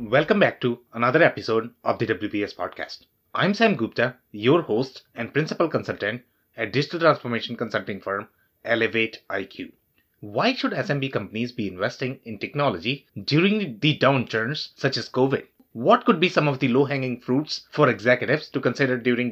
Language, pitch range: English, 125-170 Hz